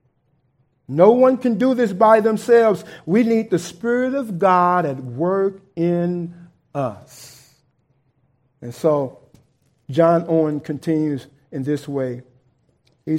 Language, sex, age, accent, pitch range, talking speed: English, male, 50-69, American, 135-185 Hz, 120 wpm